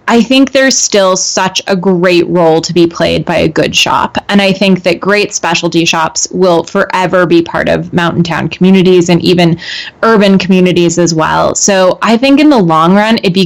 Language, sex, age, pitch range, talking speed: English, female, 20-39, 170-200 Hz, 200 wpm